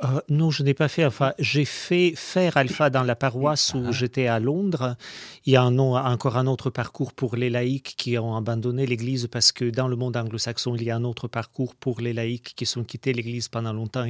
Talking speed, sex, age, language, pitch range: 230 wpm, male, 40-59, French, 125-175 Hz